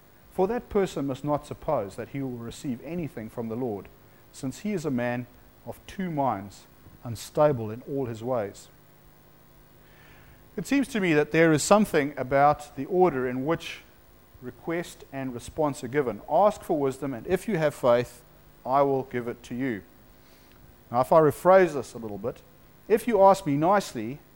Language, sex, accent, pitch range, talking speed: English, male, Australian, 125-165 Hz, 175 wpm